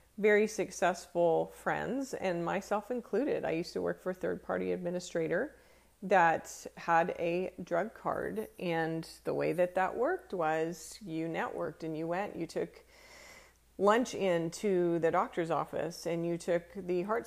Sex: female